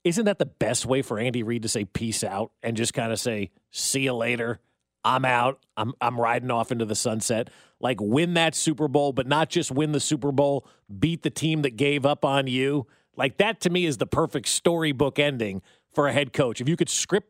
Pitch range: 125-160 Hz